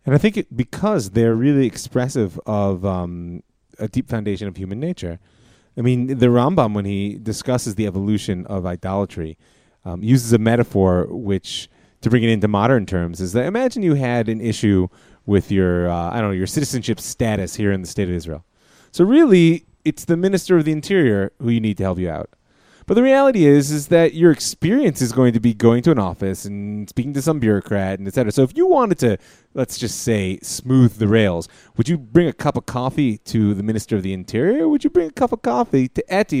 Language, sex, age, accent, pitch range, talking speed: English, male, 30-49, American, 100-145 Hz, 220 wpm